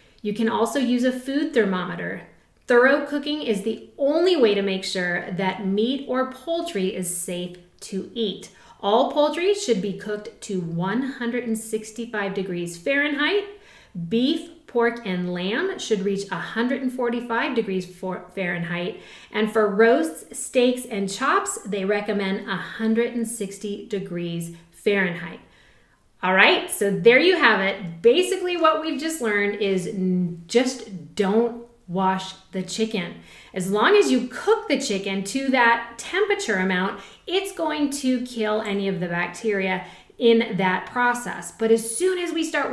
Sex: female